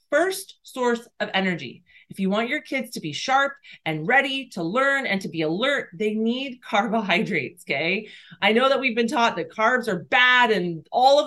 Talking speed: 195 wpm